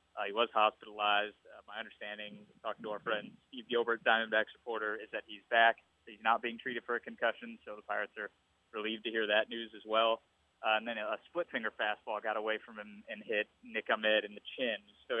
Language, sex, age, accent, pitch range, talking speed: English, male, 20-39, American, 105-120 Hz, 225 wpm